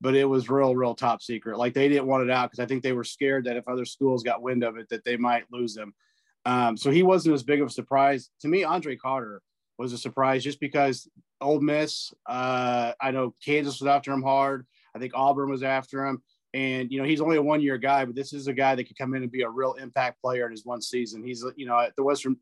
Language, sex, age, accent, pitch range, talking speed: English, male, 30-49, American, 125-145 Hz, 270 wpm